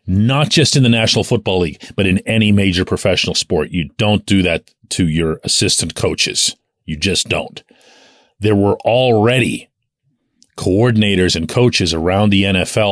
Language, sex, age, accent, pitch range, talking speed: English, male, 40-59, American, 100-130 Hz, 155 wpm